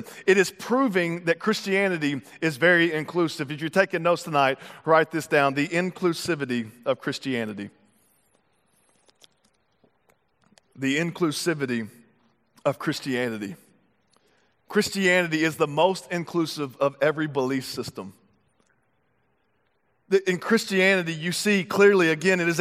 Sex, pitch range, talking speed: male, 170-210 Hz, 110 wpm